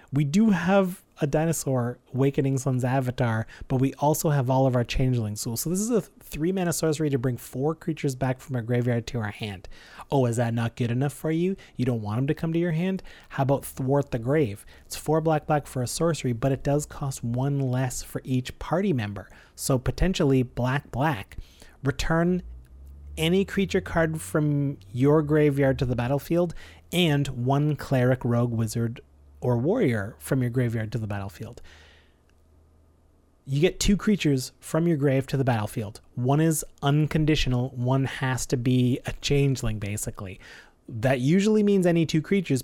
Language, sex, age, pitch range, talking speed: English, male, 30-49, 120-150 Hz, 175 wpm